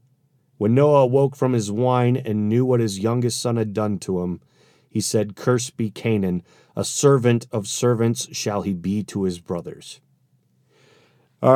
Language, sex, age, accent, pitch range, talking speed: English, male, 40-59, American, 115-145 Hz, 165 wpm